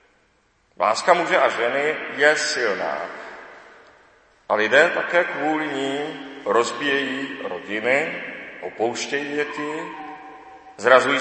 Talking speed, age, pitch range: 85 wpm, 40-59, 135-170 Hz